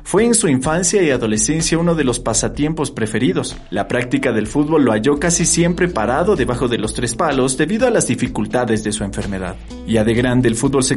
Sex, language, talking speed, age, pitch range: male, Spanish, 210 wpm, 40-59, 110-150 Hz